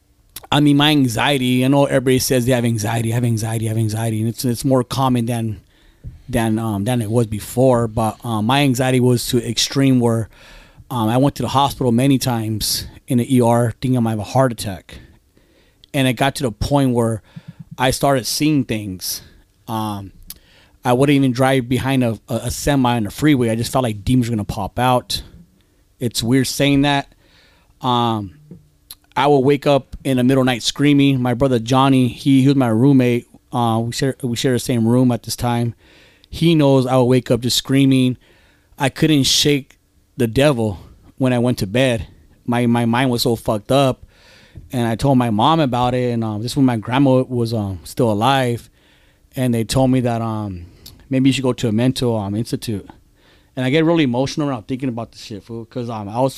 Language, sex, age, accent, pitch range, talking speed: English, male, 30-49, American, 110-130 Hz, 205 wpm